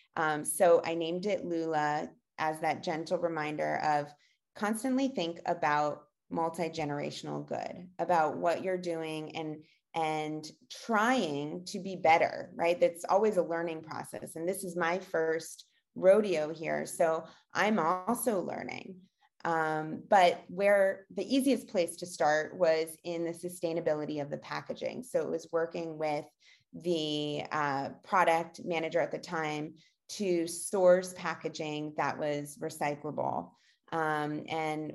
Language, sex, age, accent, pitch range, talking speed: English, female, 30-49, American, 155-190 Hz, 135 wpm